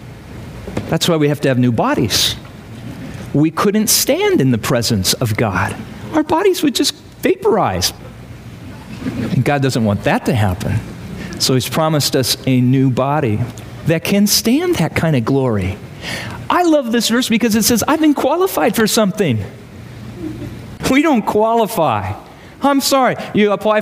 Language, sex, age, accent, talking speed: English, male, 40-59, American, 155 wpm